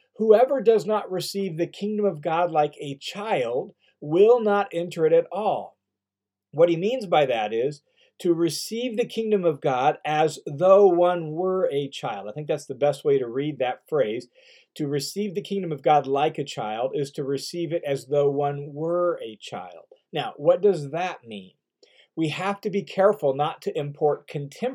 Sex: male